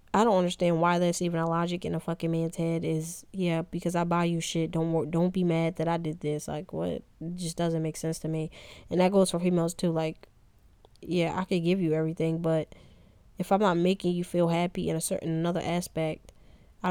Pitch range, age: 160-180 Hz, 10-29